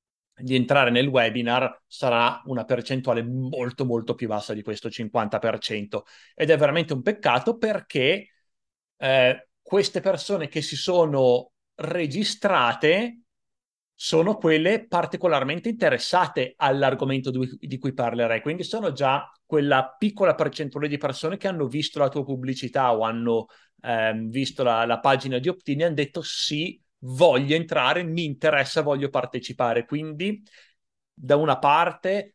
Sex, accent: male, native